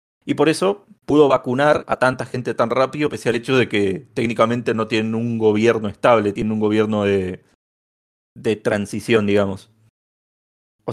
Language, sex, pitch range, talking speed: Spanish, male, 110-145 Hz, 160 wpm